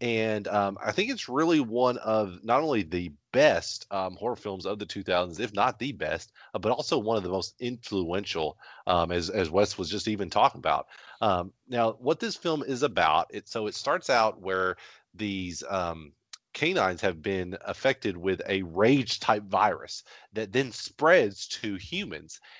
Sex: male